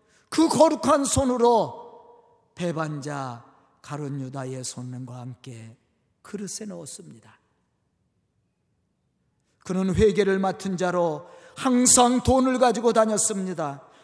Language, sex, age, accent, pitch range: Korean, male, 40-59, native, 145-240 Hz